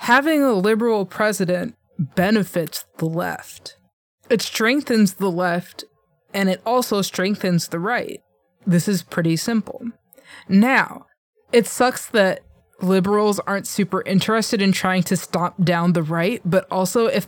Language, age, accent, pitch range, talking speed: English, 20-39, American, 180-235 Hz, 135 wpm